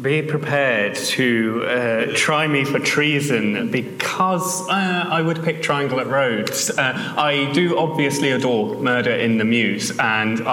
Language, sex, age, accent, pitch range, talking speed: English, male, 30-49, British, 110-145 Hz, 150 wpm